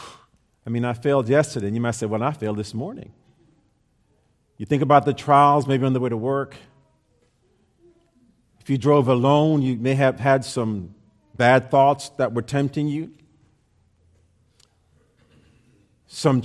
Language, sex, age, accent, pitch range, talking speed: English, male, 40-59, American, 120-155 Hz, 150 wpm